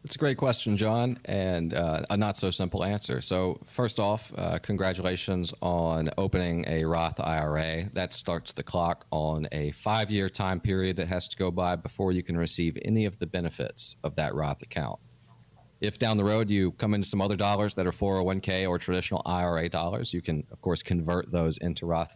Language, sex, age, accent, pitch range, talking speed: English, male, 40-59, American, 85-105 Hz, 190 wpm